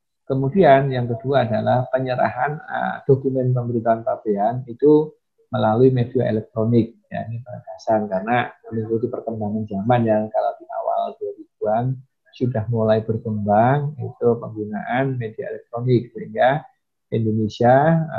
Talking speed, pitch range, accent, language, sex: 110 wpm, 115-140 Hz, native, Indonesian, male